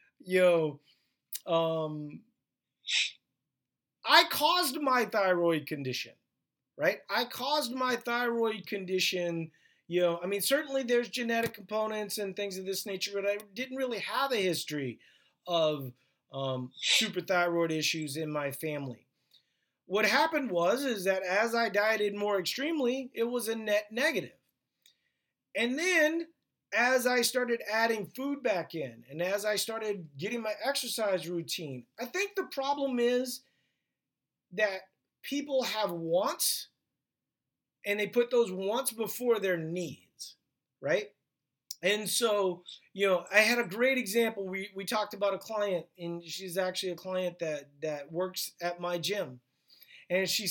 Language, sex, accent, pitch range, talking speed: English, male, American, 170-235 Hz, 140 wpm